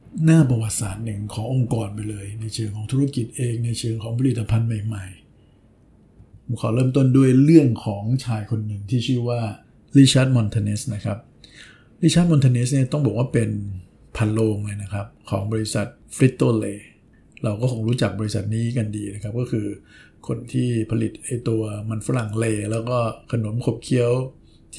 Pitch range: 105-125 Hz